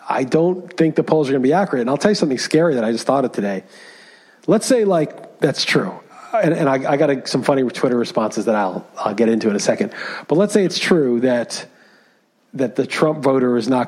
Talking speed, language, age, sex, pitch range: 245 wpm, English, 40-59, male, 125-160 Hz